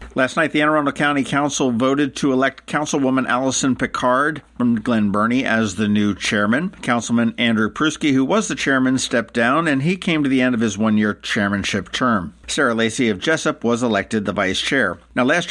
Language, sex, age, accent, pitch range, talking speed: English, male, 50-69, American, 105-135 Hz, 195 wpm